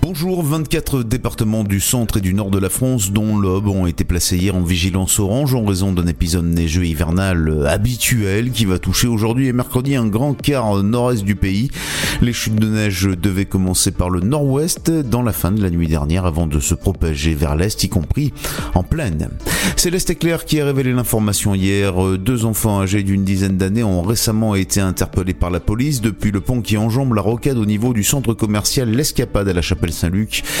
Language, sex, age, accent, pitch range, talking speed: French, male, 30-49, French, 90-120 Hz, 200 wpm